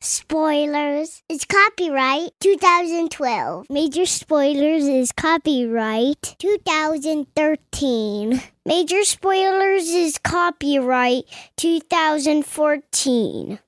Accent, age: American, 20-39